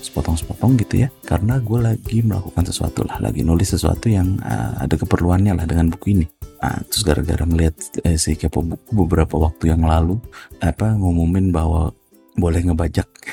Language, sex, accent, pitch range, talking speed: Indonesian, male, native, 85-120 Hz, 165 wpm